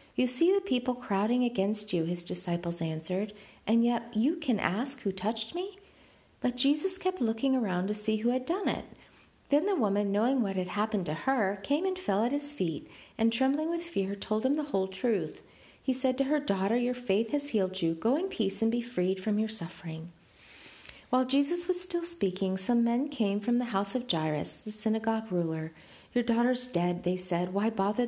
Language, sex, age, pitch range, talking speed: English, female, 40-59, 190-260 Hz, 205 wpm